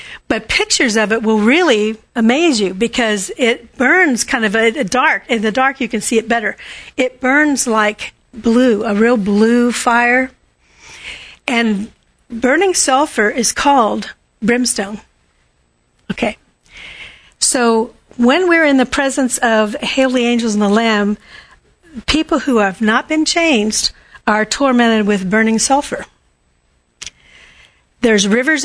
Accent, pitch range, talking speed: American, 220-260 Hz, 135 wpm